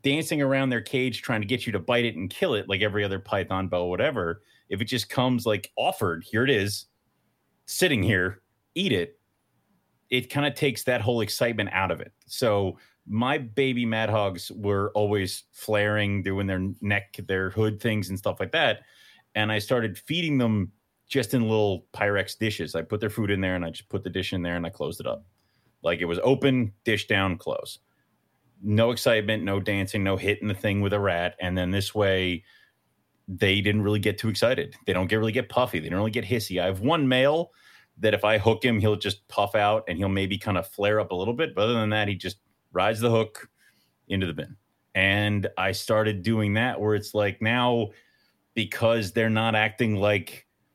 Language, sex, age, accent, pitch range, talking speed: English, male, 30-49, American, 100-115 Hz, 210 wpm